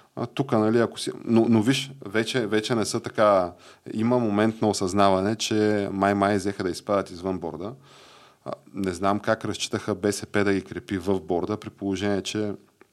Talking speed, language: 165 wpm, Bulgarian